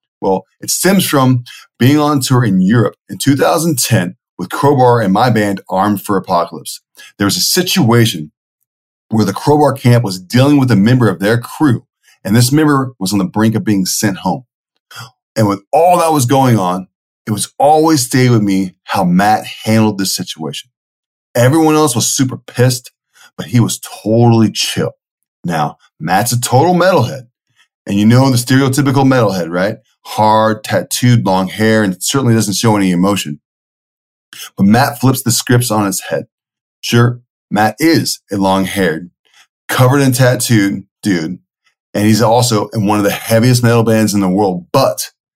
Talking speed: 170 wpm